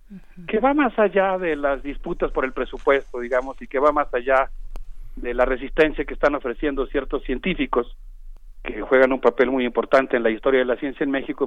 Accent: Mexican